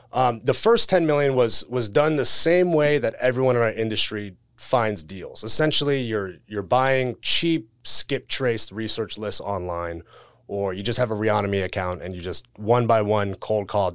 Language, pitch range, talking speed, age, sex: English, 105-130 Hz, 185 wpm, 30-49, male